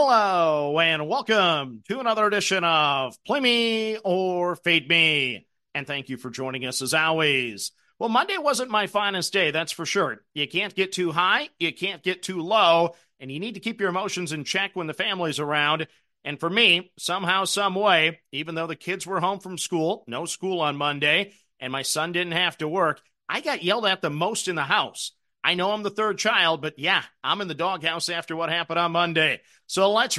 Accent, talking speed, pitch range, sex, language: American, 210 wpm, 155-200 Hz, male, English